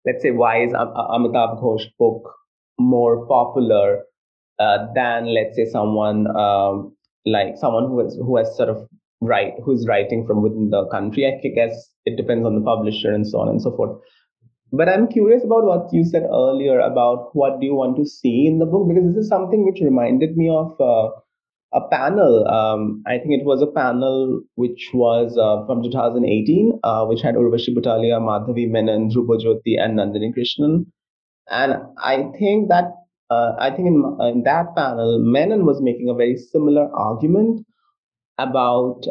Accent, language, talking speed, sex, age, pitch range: Indian, English, 175 wpm, male, 30-49, 115-165 Hz